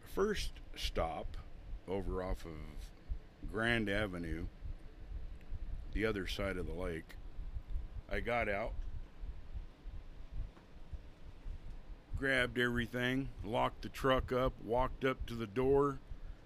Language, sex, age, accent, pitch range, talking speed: English, male, 60-79, American, 85-120 Hz, 100 wpm